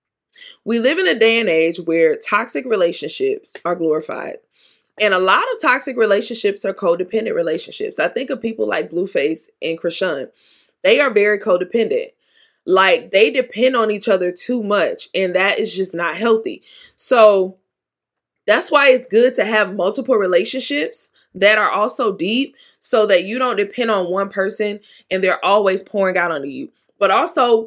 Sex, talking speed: female, 165 wpm